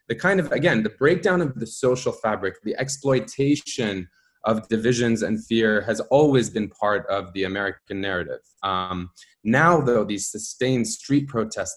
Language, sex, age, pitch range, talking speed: English, male, 20-39, 95-125 Hz, 160 wpm